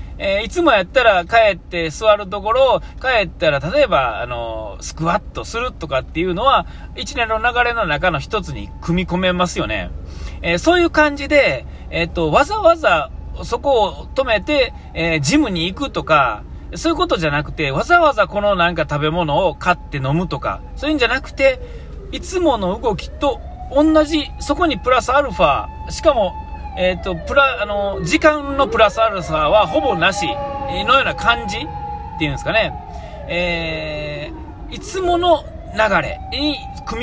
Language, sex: Japanese, male